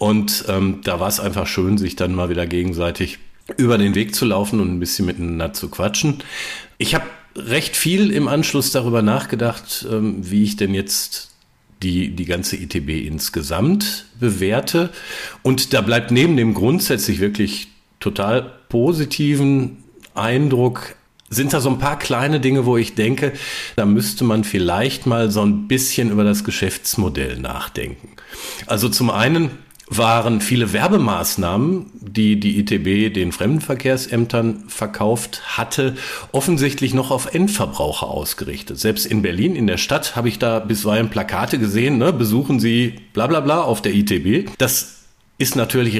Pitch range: 100-130 Hz